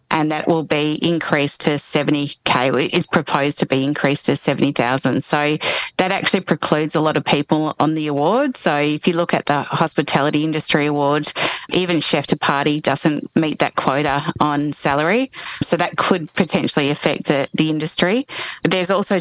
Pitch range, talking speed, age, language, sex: 145-165 Hz, 165 wpm, 30-49, English, female